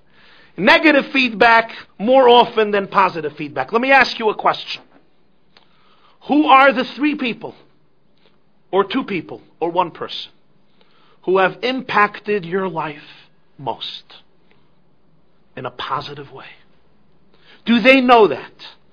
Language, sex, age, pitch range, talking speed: English, male, 50-69, 165-255 Hz, 120 wpm